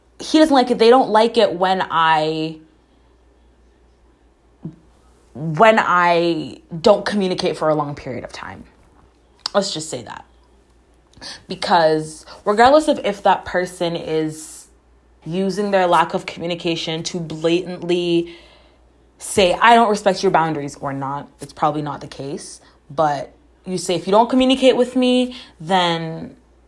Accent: American